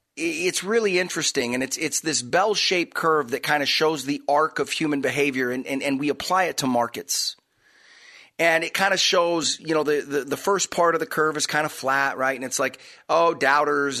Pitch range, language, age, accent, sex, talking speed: 145-185 Hz, English, 30-49, American, male, 225 wpm